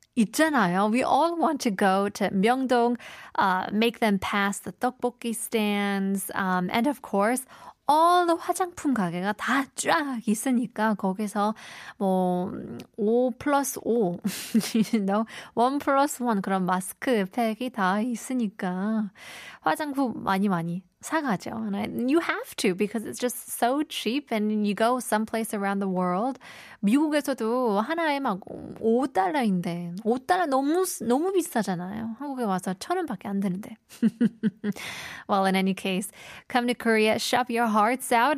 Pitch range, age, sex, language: 200-250 Hz, 20-39, female, Korean